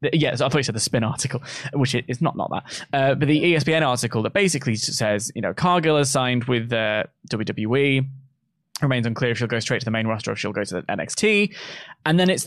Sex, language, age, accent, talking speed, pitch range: male, English, 20-39, British, 250 wpm, 110-145 Hz